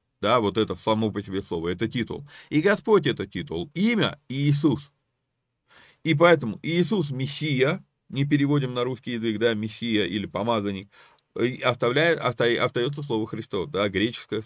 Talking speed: 145 wpm